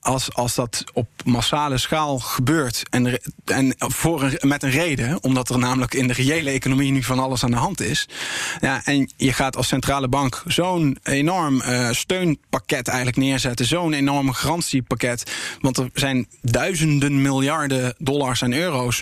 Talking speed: 165 wpm